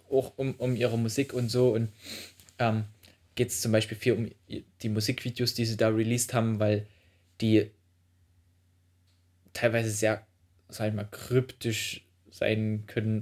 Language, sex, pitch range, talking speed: German, male, 90-125 Hz, 140 wpm